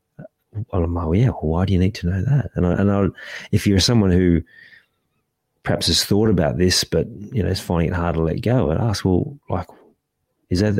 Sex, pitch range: male, 85-110 Hz